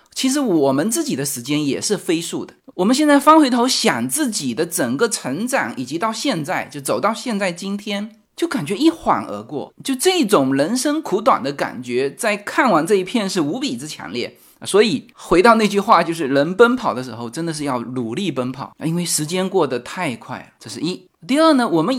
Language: Chinese